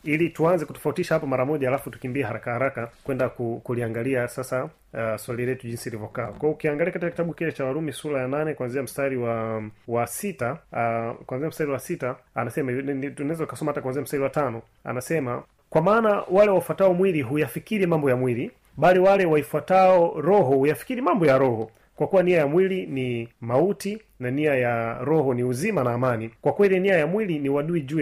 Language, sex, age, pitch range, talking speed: Swahili, male, 30-49, 130-170 Hz, 185 wpm